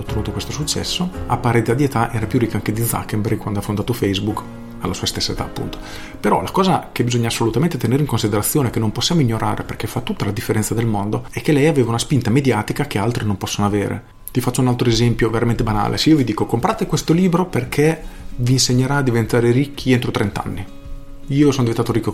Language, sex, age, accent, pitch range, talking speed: Italian, male, 40-59, native, 105-130 Hz, 220 wpm